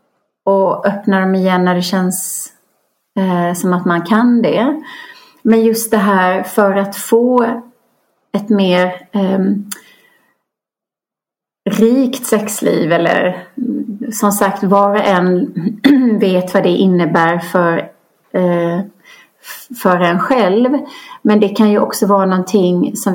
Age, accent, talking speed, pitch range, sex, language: 30-49, native, 115 wpm, 185-225 Hz, female, Swedish